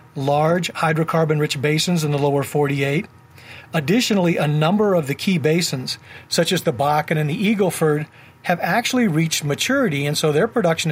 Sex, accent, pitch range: male, American, 150-180 Hz